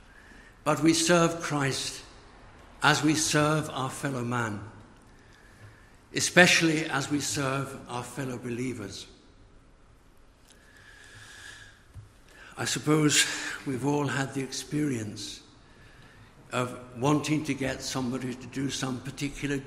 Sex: male